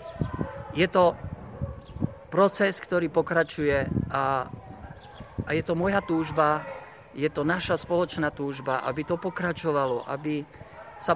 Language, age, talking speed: Slovak, 50-69, 115 wpm